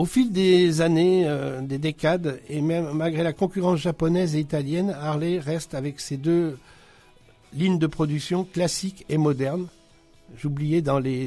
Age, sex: 60-79, male